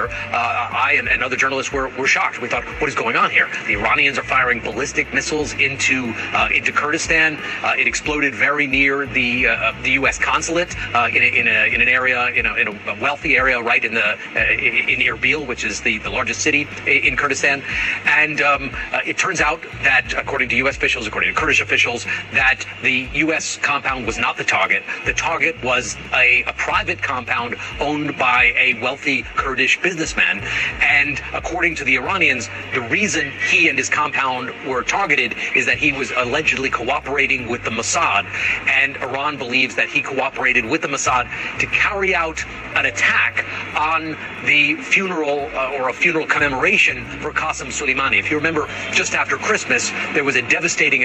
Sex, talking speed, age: male, 185 wpm, 40-59